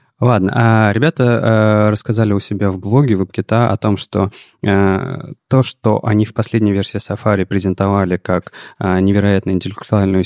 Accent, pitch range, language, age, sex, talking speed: native, 95-115 Hz, Russian, 20-39, male, 150 wpm